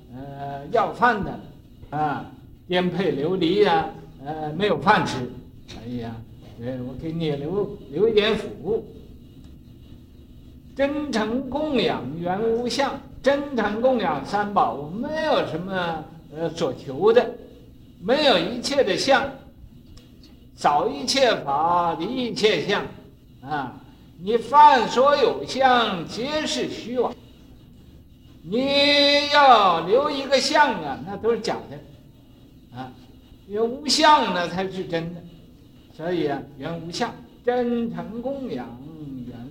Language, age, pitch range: Chinese, 60-79, 160-245 Hz